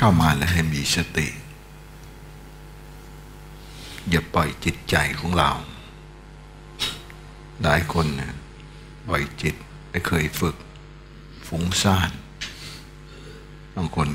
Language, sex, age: Thai, male, 60-79